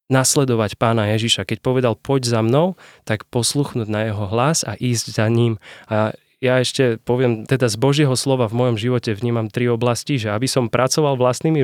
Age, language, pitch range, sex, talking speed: 20-39, Slovak, 120-140 Hz, male, 185 wpm